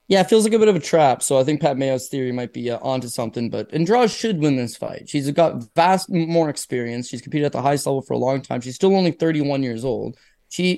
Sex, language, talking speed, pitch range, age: male, English, 265 wpm, 125-160 Hz, 20-39